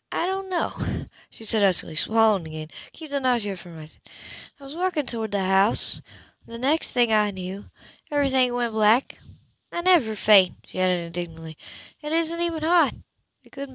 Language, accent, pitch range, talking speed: English, American, 160-210 Hz, 170 wpm